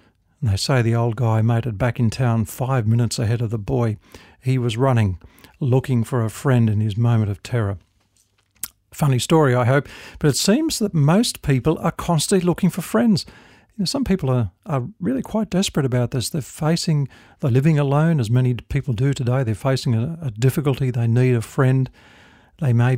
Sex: male